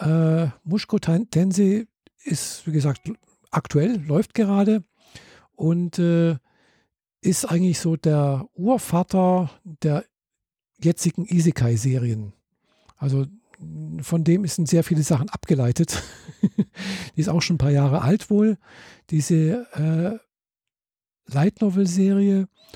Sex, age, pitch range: male, 50-69, 150-185 Hz